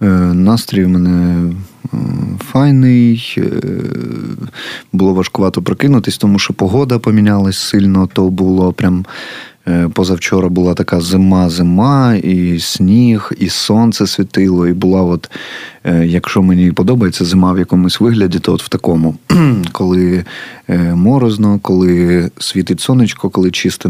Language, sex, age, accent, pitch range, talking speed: Ukrainian, male, 20-39, native, 90-100 Hz, 115 wpm